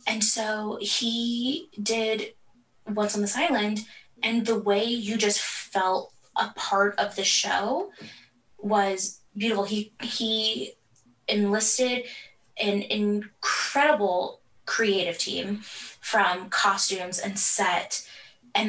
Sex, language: female, English